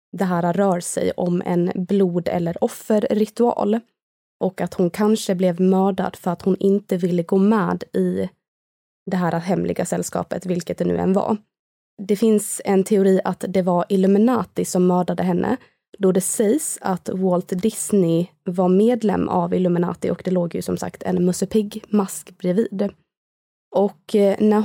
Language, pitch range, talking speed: Swedish, 180-210 Hz, 155 wpm